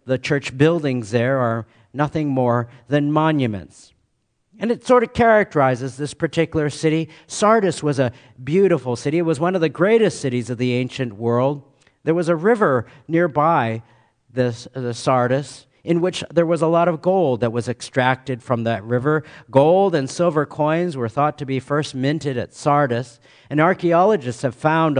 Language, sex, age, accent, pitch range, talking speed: English, male, 50-69, American, 125-175 Hz, 170 wpm